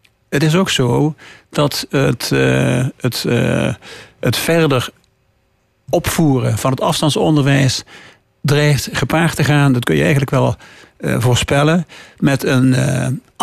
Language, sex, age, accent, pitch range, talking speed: Dutch, male, 50-69, Dutch, 130-155 Hz, 115 wpm